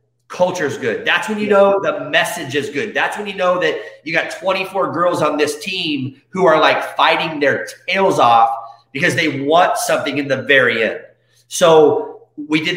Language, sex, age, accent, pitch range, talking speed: English, male, 30-49, American, 120-165 Hz, 195 wpm